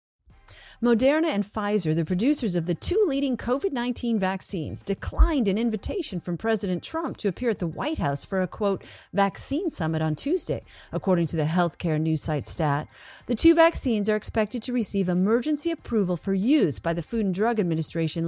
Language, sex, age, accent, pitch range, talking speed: English, female, 40-59, American, 170-245 Hz, 175 wpm